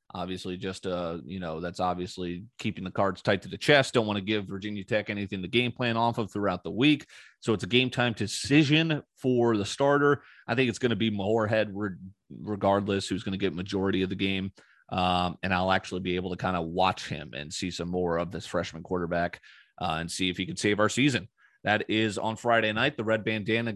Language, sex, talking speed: English, male, 230 wpm